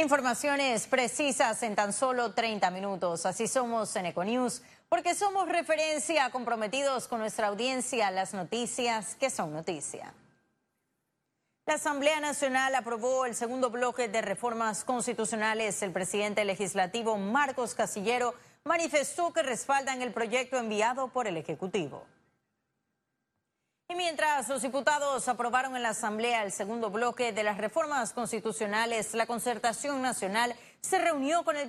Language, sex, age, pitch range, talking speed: Spanish, female, 30-49, 220-270 Hz, 130 wpm